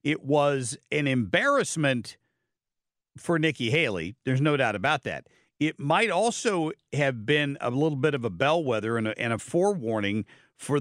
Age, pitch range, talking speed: 50-69, 120-155 Hz, 160 wpm